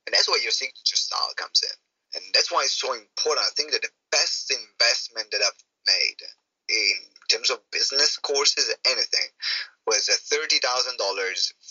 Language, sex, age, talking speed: English, male, 30-49, 160 wpm